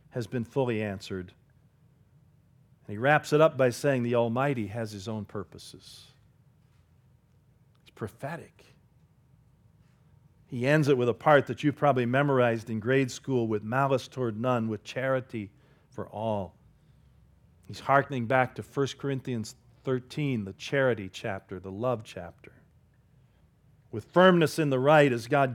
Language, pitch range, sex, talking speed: English, 110-140 Hz, male, 145 wpm